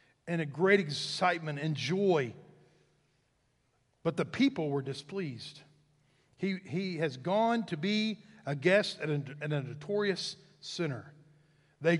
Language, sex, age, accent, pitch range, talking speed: English, male, 50-69, American, 155-200 Hz, 130 wpm